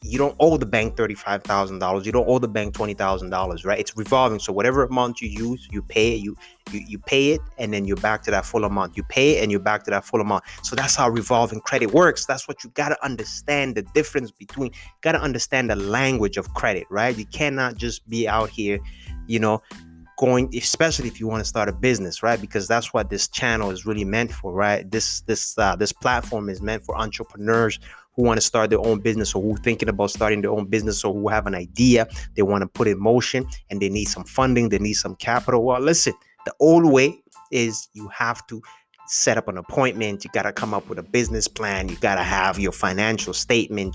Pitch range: 100-125 Hz